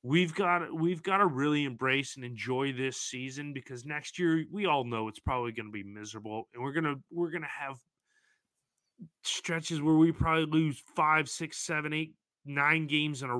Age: 30-49